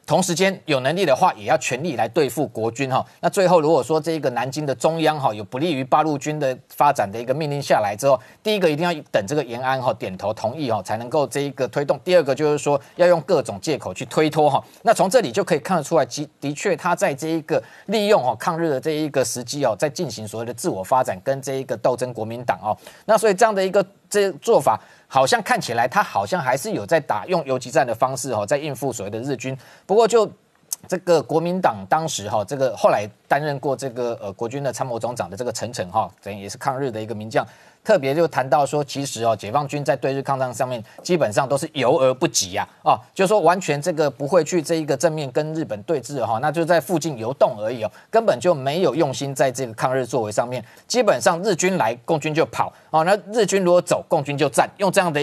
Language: Chinese